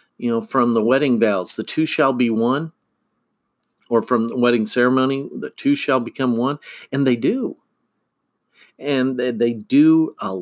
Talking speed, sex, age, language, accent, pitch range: 160 wpm, male, 50-69, English, American, 110-140 Hz